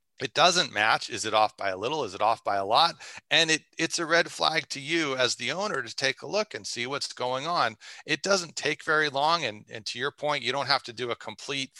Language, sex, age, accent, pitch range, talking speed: English, male, 40-59, American, 110-145 Hz, 265 wpm